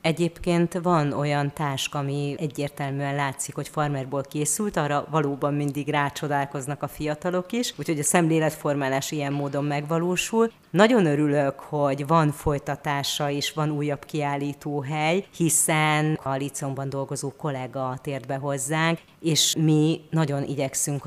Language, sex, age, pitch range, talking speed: Hungarian, female, 30-49, 140-155 Hz, 125 wpm